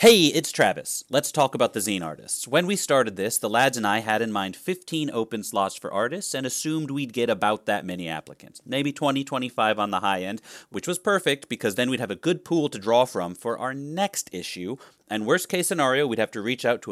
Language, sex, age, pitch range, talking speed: English, male, 30-49, 105-145 Hz, 240 wpm